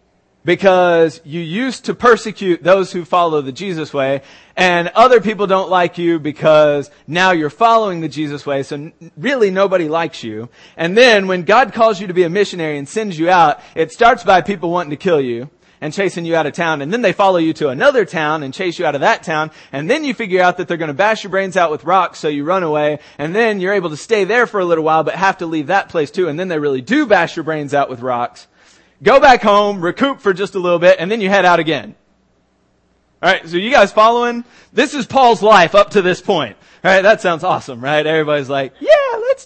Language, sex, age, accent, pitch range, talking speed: English, male, 30-49, American, 155-215 Hz, 240 wpm